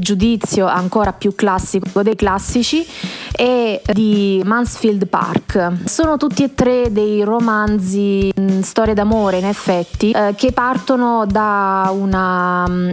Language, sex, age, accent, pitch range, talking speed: Italian, female, 20-39, native, 195-230 Hz, 125 wpm